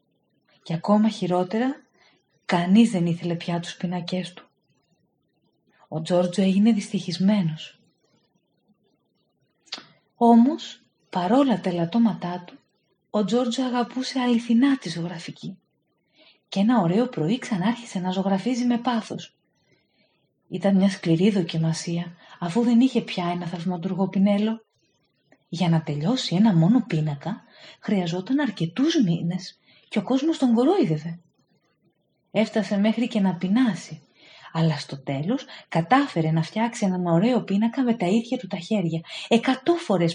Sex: female